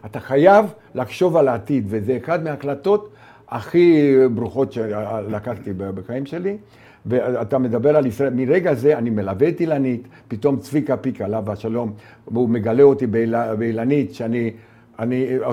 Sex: male